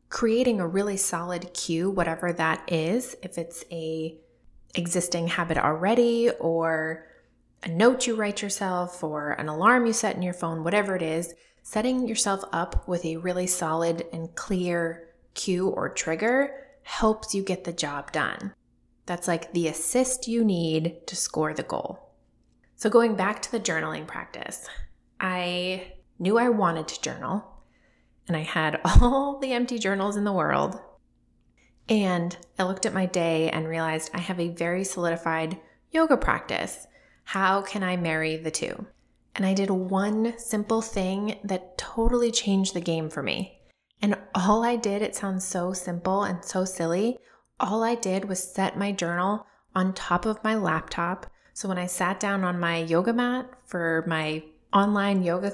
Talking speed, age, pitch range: 165 wpm, 20-39, 170-215 Hz